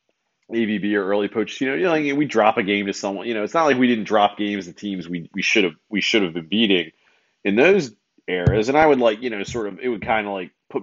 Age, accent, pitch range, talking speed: 30-49, American, 95-130 Hz, 285 wpm